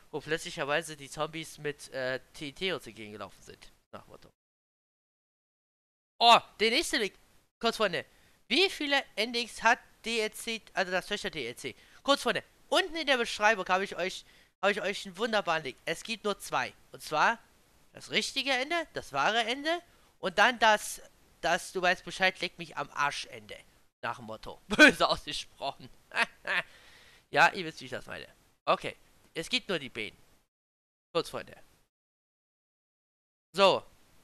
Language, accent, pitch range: German, German, 140-215 Hz